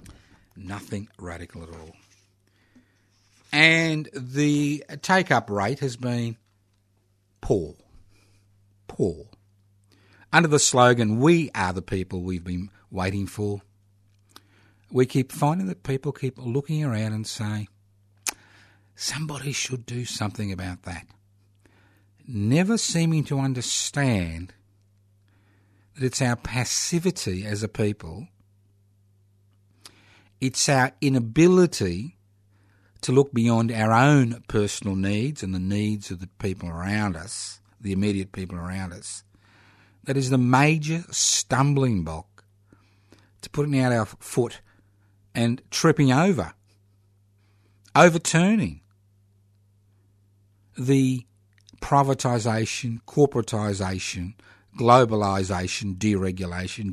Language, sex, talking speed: English, male, 100 wpm